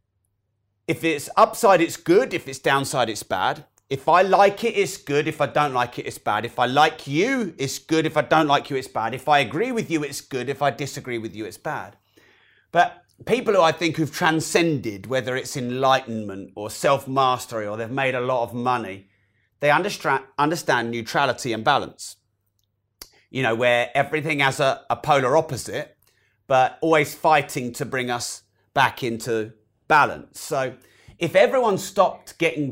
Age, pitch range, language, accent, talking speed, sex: 30-49, 120-160 Hz, English, British, 180 wpm, male